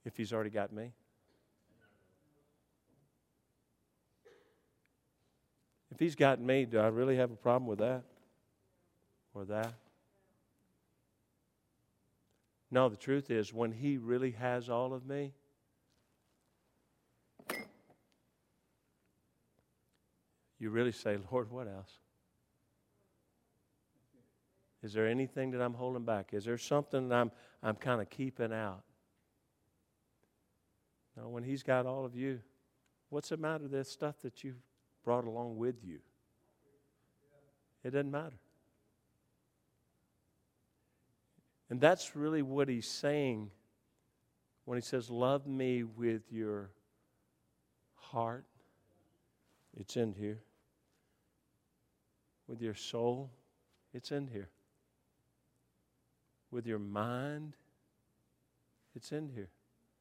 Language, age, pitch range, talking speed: English, 50-69, 110-135 Hz, 105 wpm